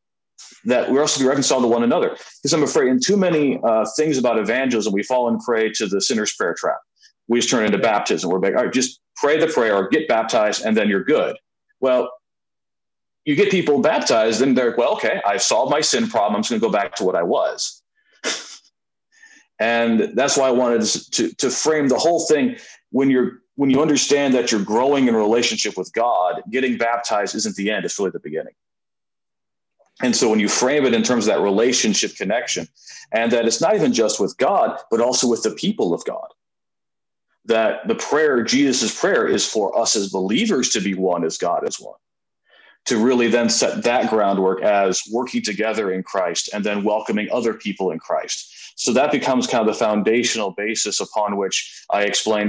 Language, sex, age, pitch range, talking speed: English, male, 40-59, 105-145 Hz, 205 wpm